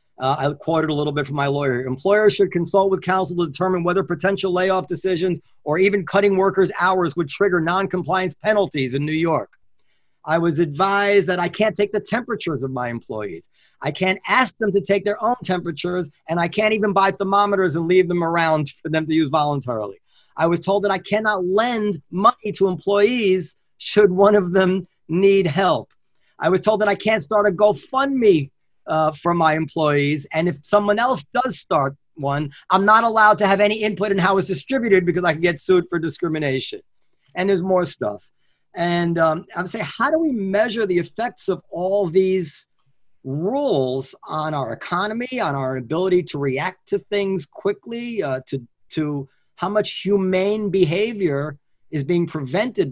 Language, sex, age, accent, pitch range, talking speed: English, male, 40-59, American, 155-200 Hz, 185 wpm